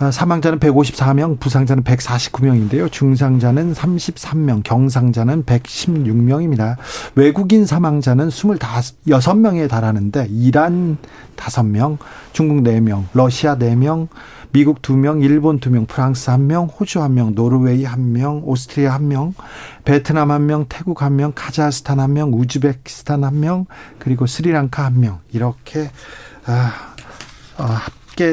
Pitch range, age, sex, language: 125-150 Hz, 40-59, male, Korean